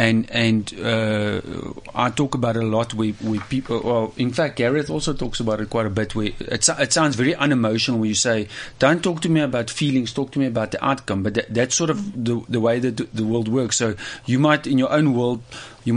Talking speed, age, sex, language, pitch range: 250 wpm, 30-49, male, English, 110-130 Hz